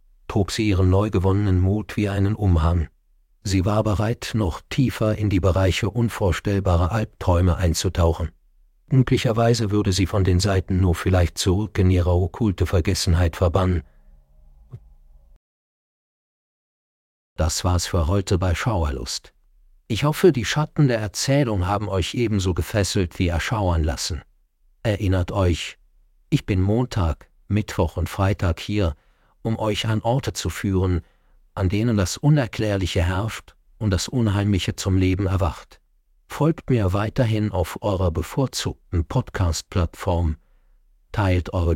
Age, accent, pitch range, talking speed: 50-69, German, 90-110 Hz, 125 wpm